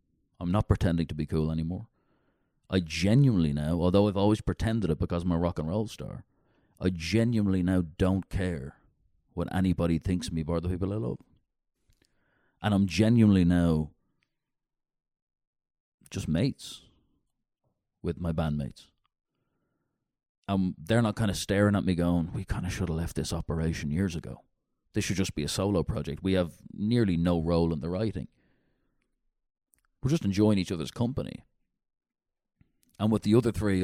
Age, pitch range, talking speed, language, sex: 30-49, 80-95 Hz, 160 wpm, English, male